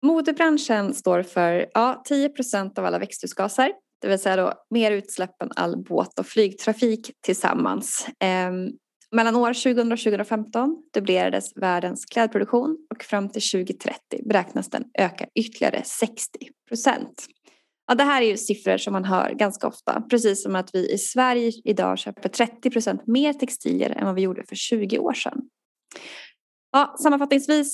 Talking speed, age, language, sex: 150 wpm, 20-39, Swedish, female